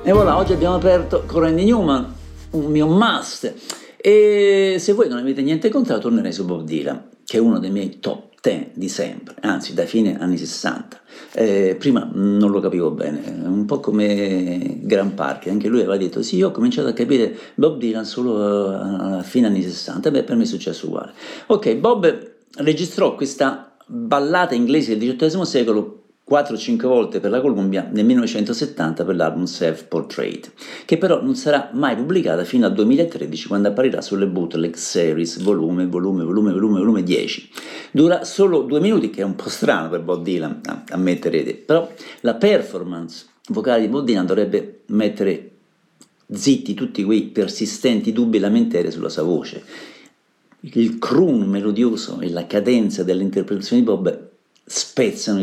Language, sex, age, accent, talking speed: Italian, male, 50-69, native, 165 wpm